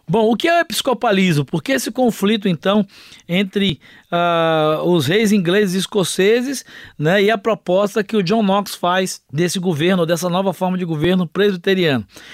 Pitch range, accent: 180-225 Hz, Brazilian